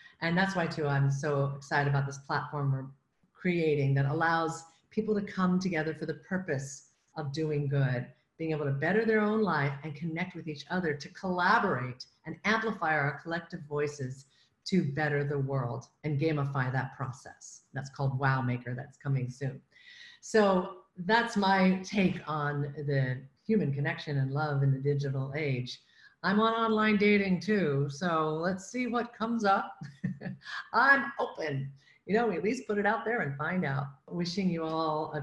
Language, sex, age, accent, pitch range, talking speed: English, female, 50-69, American, 140-190 Hz, 170 wpm